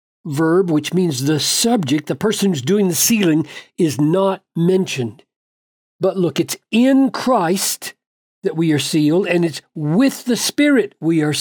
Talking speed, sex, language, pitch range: 160 wpm, male, English, 155-200 Hz